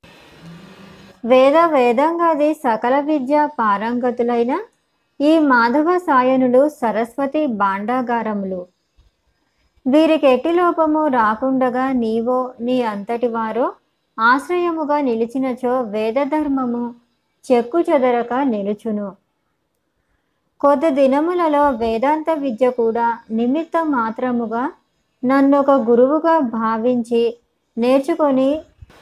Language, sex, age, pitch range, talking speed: Telugu, male, 20-39, 230-285 Hz, 65 wpm